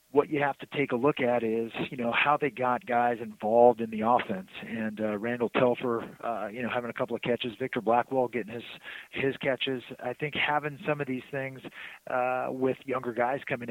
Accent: American